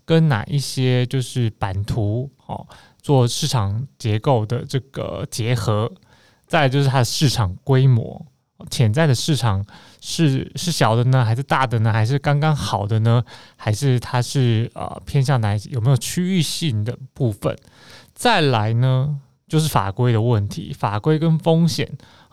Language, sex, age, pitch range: Chinese, male, 20-39, 115-145 Hz